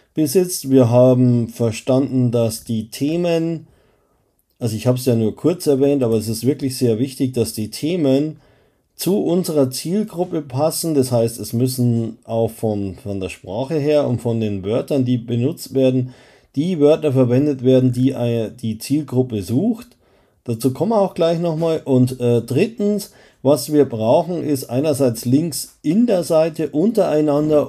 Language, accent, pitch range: German, German, 120-155 Hz